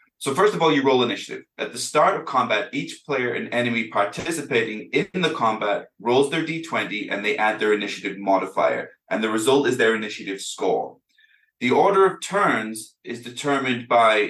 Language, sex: English, male